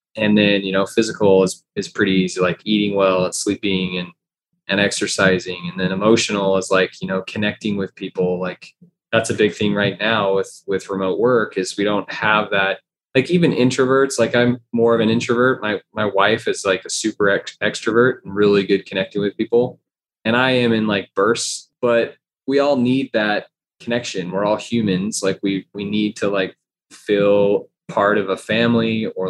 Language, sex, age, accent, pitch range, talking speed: English, male, 20-39, American, 95-115 Hz, 190 wpm